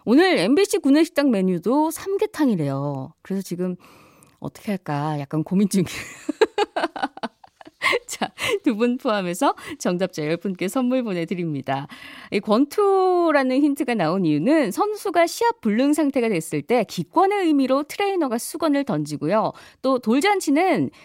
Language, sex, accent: Korean, female, native